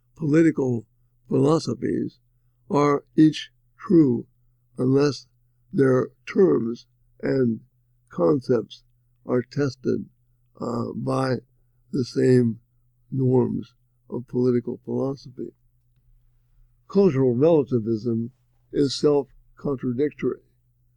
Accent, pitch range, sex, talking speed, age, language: American, 120-135 Hz, male, 70 wpm, 60-79, English